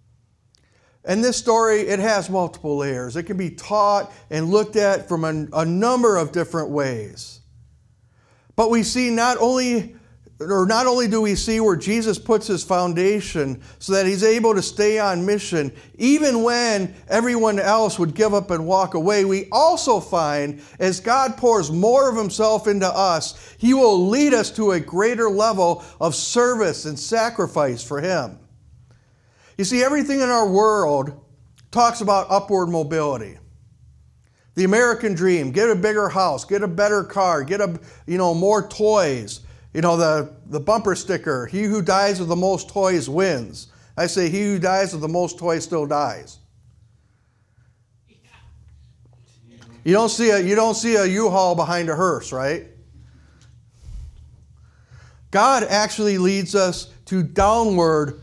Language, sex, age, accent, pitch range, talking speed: English, male, 50-69, American, 150-215 Hz, 155 wpm